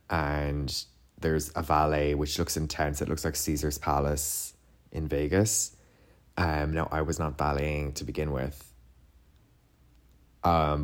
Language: English